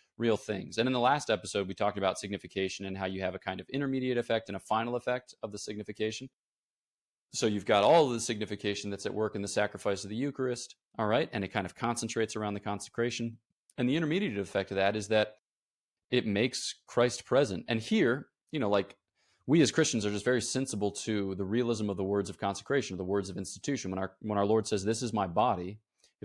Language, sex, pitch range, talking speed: English, male, 95-115 Hz, 230 wpm